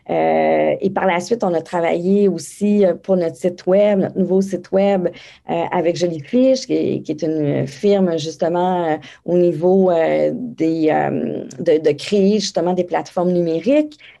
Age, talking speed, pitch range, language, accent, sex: 30-49, 175 wpm, 175-205 Hz, French, Canadian, female